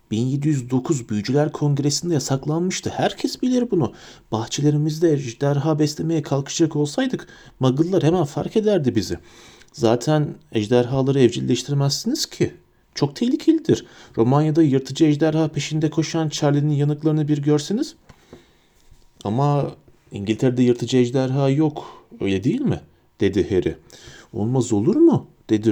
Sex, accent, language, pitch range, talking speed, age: male, native, Turkish, 115-155 Hz, 105 wpm, 40-59